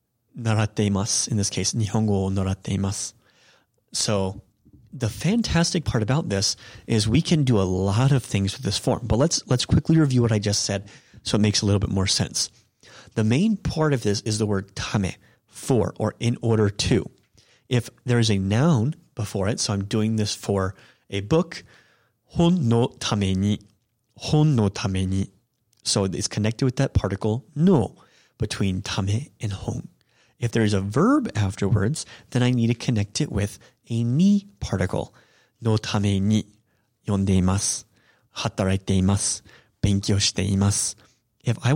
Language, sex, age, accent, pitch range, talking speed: English, male, 30-49, American, 100-130 Hz, 150 wpm